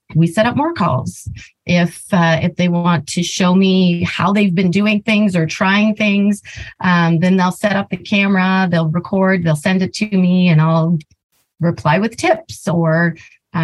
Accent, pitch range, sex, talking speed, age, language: American, 150-195 Hz, female, 180 wpm, 30-49, English